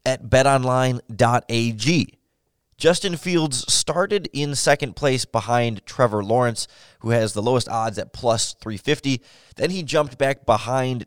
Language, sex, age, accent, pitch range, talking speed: English, male, 20-39, American, 110-140 Hz, 130 wpm